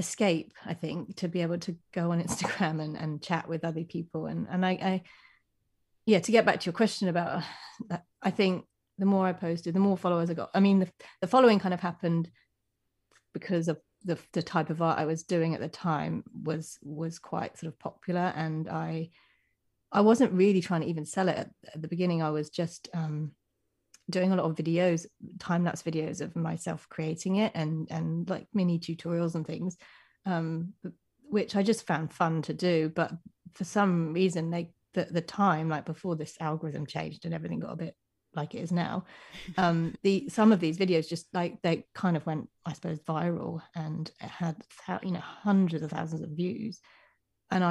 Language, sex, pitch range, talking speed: English, female, 160-185 Hz, 200 wpm